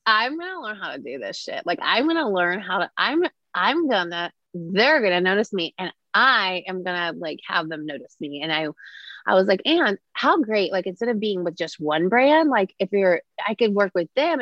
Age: 20-39